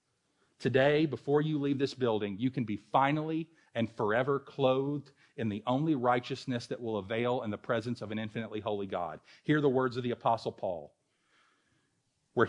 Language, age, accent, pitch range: English, 40-59, American, 110-150 Hz